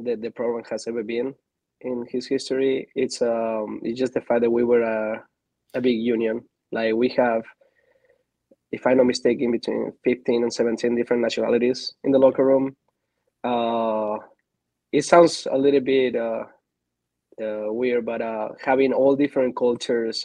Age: 20-39